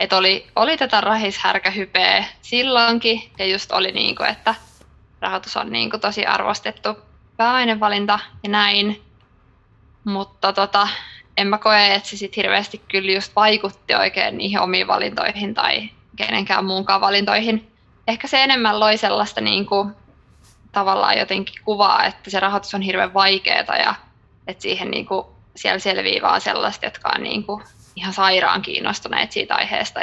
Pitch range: 195-220 Hz